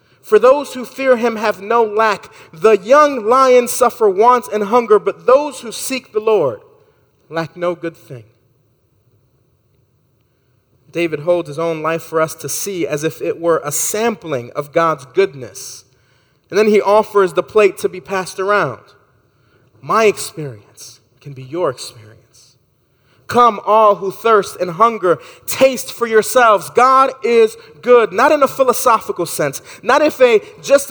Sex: male